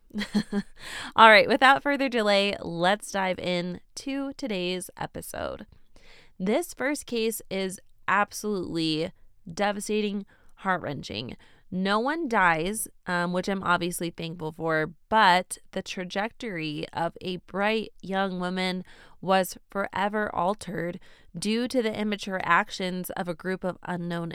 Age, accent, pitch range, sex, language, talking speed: 20-39, American, 175-220 Hz, female, English, 120 wpm